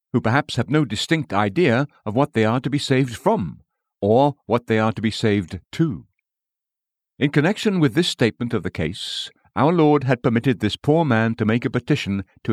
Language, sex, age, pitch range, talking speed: English, male, 60-79, 110-145 Hz, 200 wpm